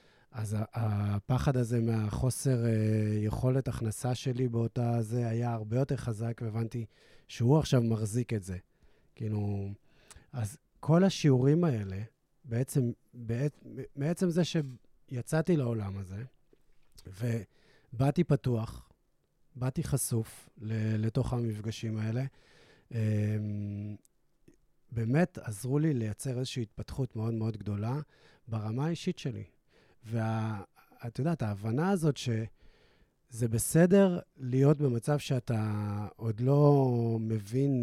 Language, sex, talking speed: Hebrew, male, 100 wpm